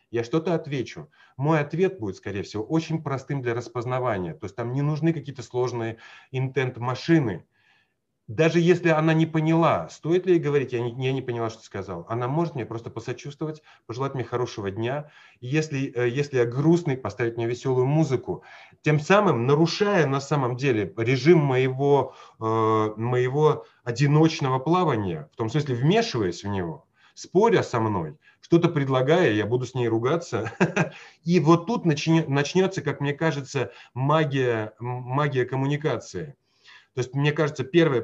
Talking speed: 155 wpm